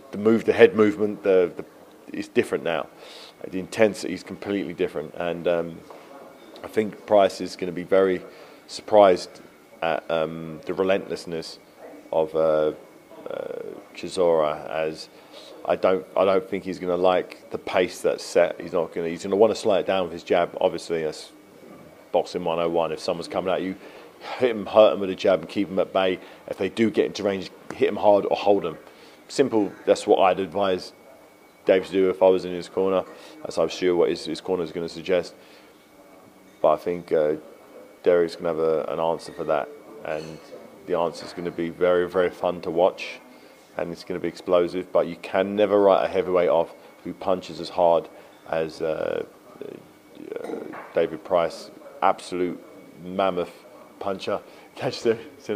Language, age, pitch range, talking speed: English, 40-59, 85-100 Hz, 190 wpm